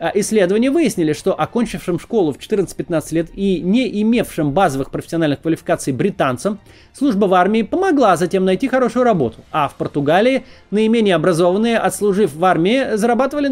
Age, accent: 20-39, native